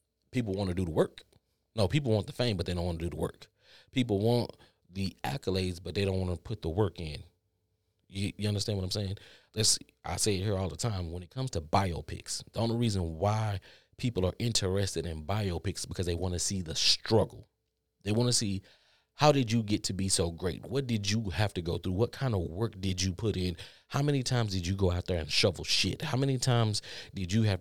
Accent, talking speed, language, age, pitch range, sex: American, 240 wpm, English, 30-49, 90-115 Hz, male